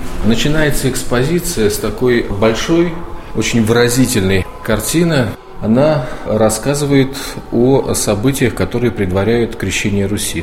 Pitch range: 100-130 Hz